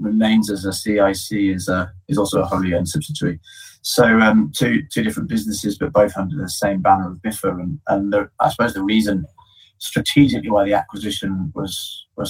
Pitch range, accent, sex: 100-110 Hz, British, male